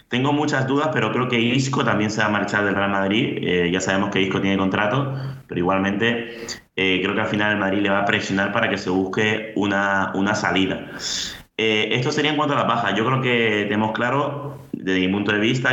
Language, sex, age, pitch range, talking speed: Spanish, male, 30-49, 95-110 Hz, 230 wpm